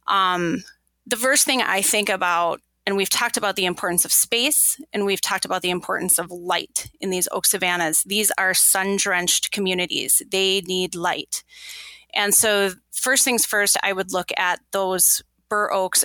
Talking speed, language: 175 wpm, English